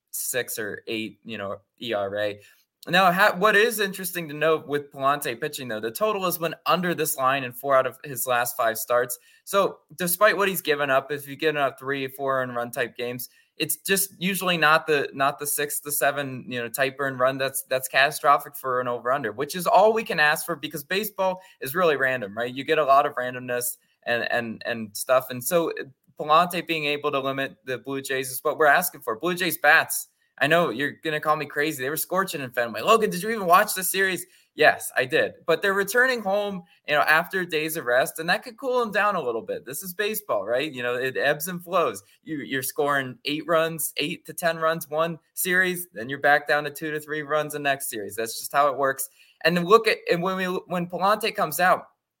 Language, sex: English, male